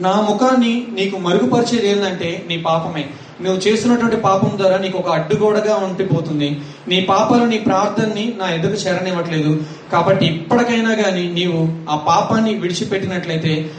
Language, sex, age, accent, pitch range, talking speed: Telugu, male, 30-49, native, 165-220 Hz, 125 wpm